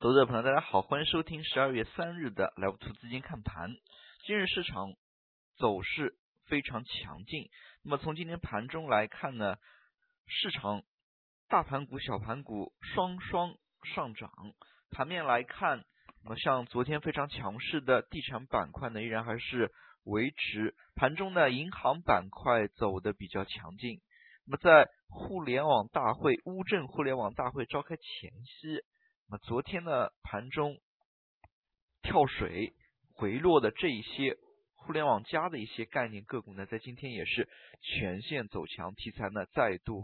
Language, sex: Chinese, male